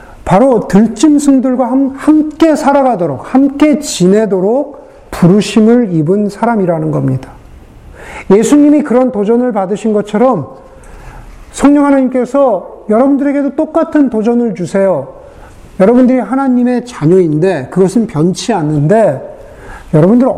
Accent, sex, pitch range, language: native, male, 170-255 Hz, Korean